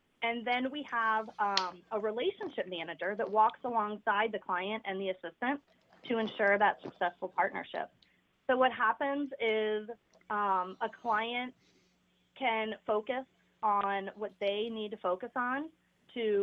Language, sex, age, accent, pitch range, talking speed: English, female, 30-49, American, 195-245 Hz, 140 wpm